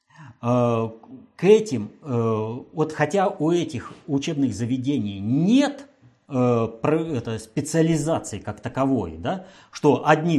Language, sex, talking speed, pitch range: Russian, male, 85 wpm, 110-155 Hz